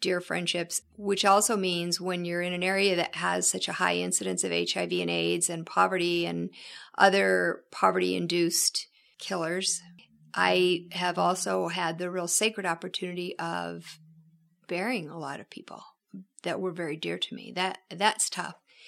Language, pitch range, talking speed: English, 170-215 Hz, 160 wpm